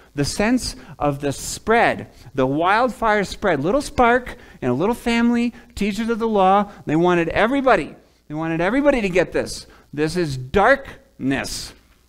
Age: 40-59